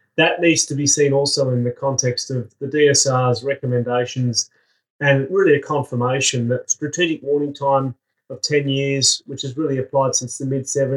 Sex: male